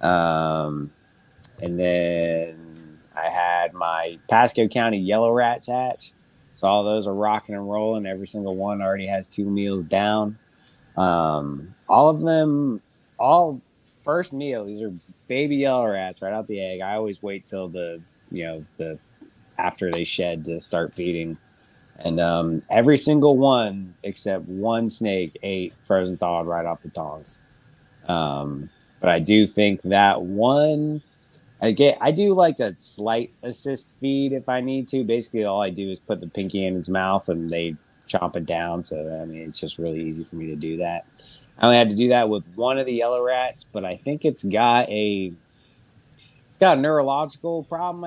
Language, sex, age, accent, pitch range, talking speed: English, male, 20-39, American, 90-130 Hz, 175 wpm